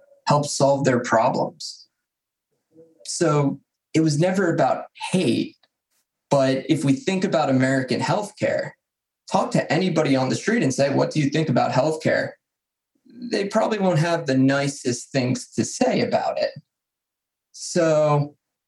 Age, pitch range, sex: 20-39, 130-170 Hz, male